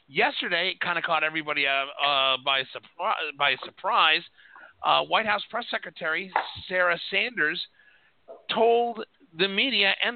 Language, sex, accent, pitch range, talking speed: English, male, American, 145-195 Hz, 130 wpm